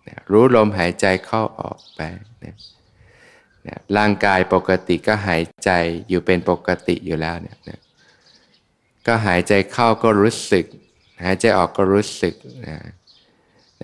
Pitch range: 95-110 Hz